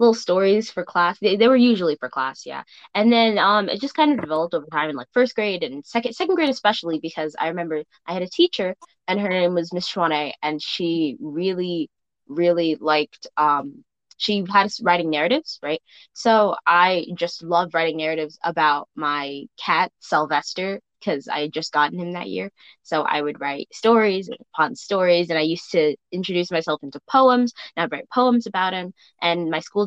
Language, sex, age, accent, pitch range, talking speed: English, female, 10-29, American, 160-225 Hz, 195 wpm